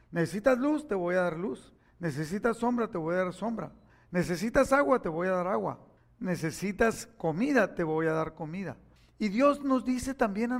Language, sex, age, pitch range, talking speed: Spanish, male, 50-69, 175-230 Hz, 195 wpm